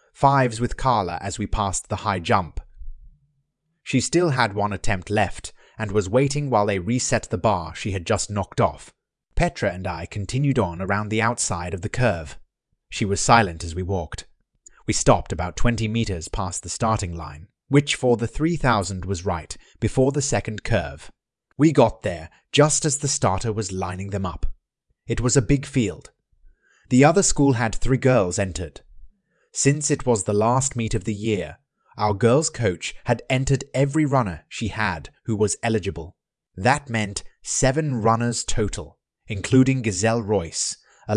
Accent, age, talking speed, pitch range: British, 30-49, 170 wpm, 95-130 Hz